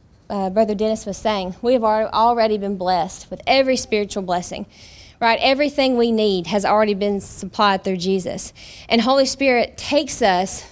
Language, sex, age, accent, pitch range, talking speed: English, female, 20-39, American, 205-250 Hz, 160 wpm